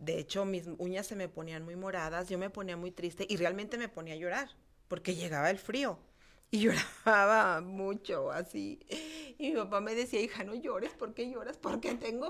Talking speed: 200 wpm